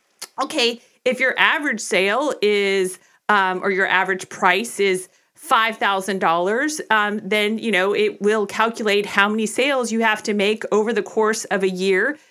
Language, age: English, 40-59